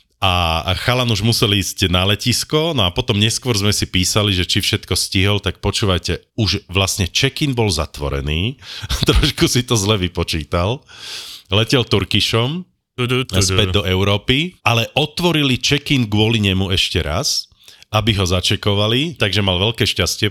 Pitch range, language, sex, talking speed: 85-115 Hz, Slovak, male, 145 wpm